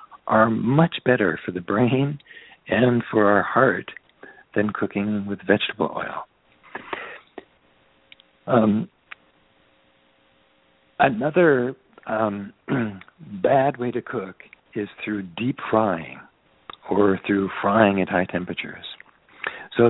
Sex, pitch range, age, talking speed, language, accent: male, 95-120 Hz, 60-79, 100 wpm, English, American